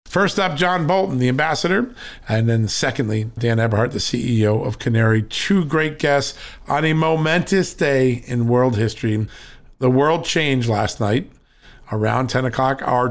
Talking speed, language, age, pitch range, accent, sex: 155 wpm, English, 50-69, 115-140 Hz, American, male